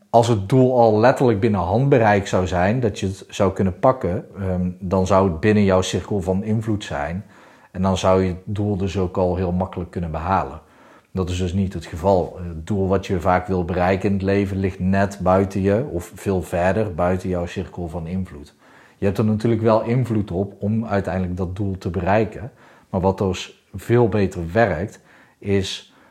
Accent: Dutch